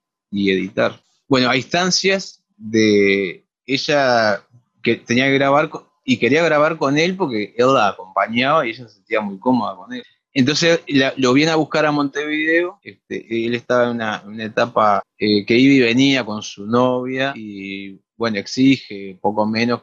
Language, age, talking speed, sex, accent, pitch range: Spanish, 20-39, 175 wpm, male, Argentinian, 115-160 Hz